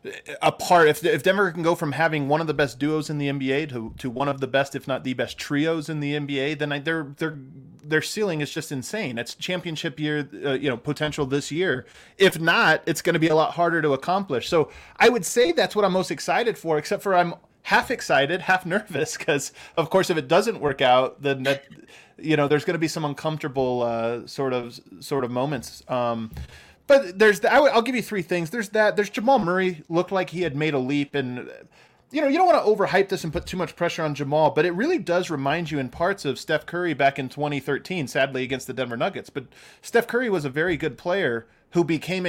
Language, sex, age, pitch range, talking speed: English, male, 20-39, 140-185 Hz, 235 wpm